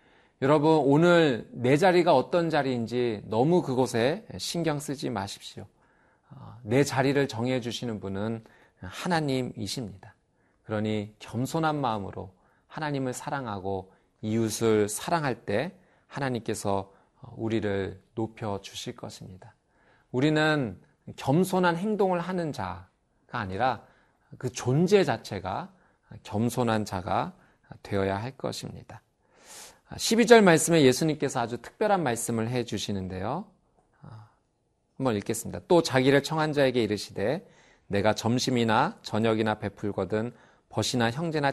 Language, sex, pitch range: Korean, male, 110-150 Hz